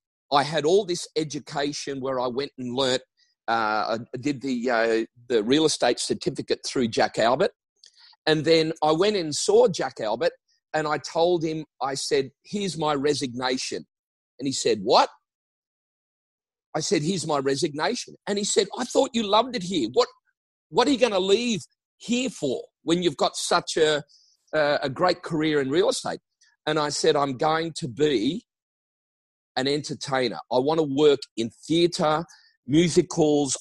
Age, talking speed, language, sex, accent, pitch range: 40-59, 165 wpm, English, male, Australian, 140-200 Hz